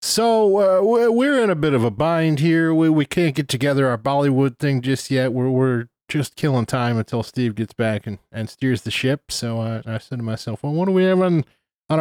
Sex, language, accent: male, English, American